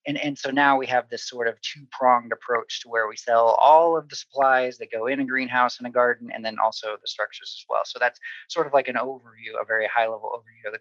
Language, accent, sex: English, American, male